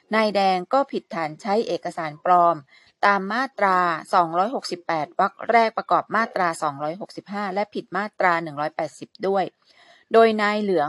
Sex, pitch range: female, 160-210 Hz